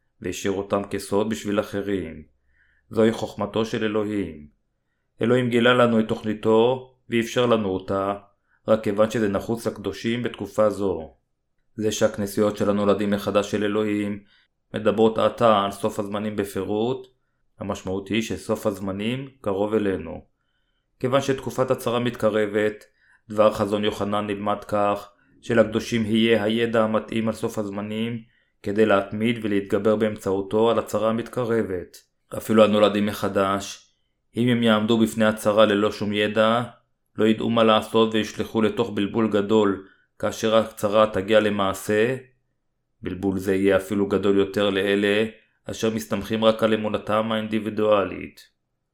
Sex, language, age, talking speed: male, Hebrew, 30-49, 125 wpm